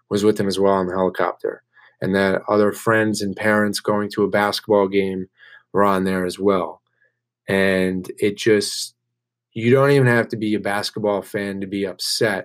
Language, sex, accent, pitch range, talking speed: English, male, American, 100-115 Hz, 190 wpm